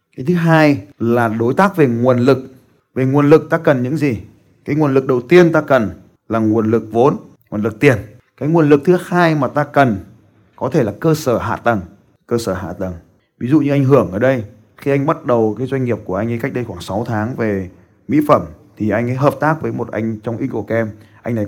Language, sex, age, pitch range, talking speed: Vietnamese, male, 20-39, 105-140 Hz, 235 wpm